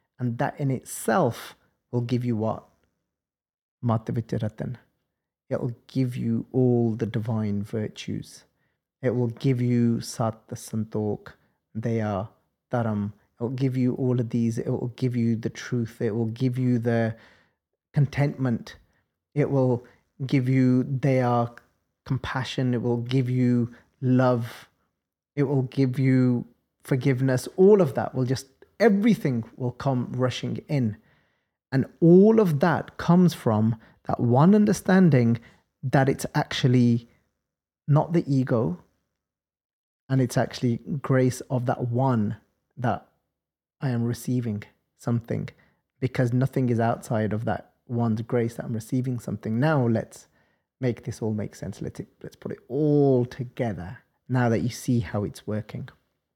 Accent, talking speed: British, 135 wpm